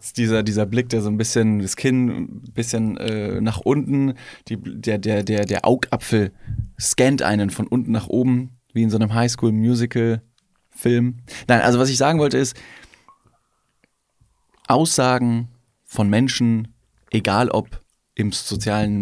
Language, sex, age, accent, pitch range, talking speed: German, male, 20-39, German, 105-125 Hz, 140 wpm